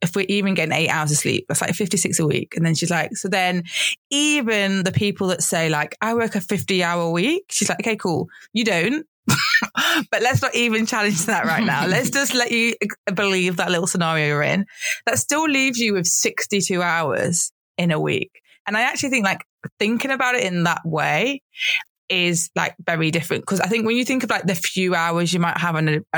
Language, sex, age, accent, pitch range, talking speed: English, female, 20-39, British, 165-205 Hz, 220 wpm